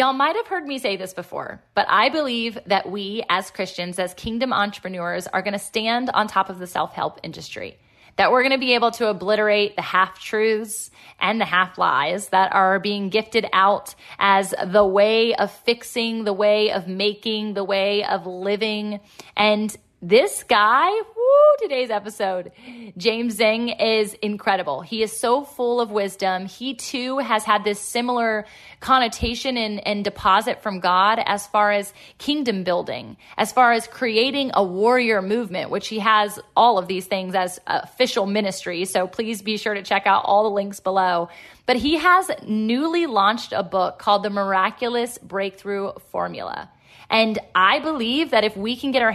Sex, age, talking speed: female, 20-39, 175 wpm